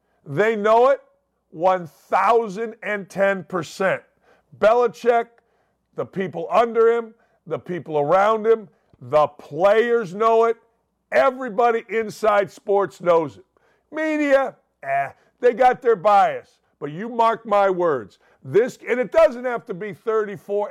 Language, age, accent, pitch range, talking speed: English, 50-69, American, 190-240 Hz, 120 wpm